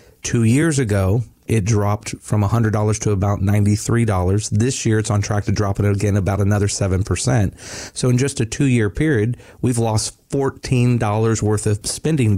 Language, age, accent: English, 40-59, American